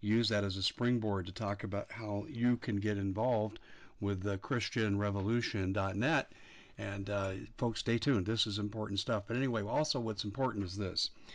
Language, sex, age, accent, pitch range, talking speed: English, male, 50-69, American, 100-115 Hz, 170 wpm